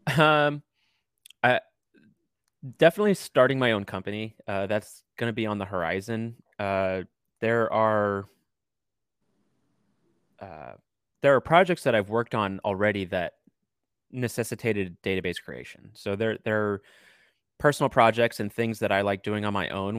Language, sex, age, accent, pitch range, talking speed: English, male, 30-49, American, 95-110 Hz, 140 wpm